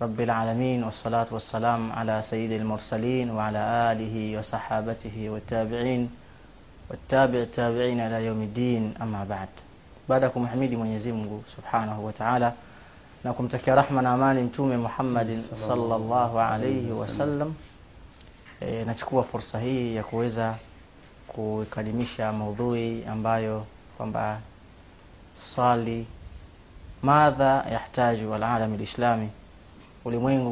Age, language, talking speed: 30-49, Swahili, 90 wpm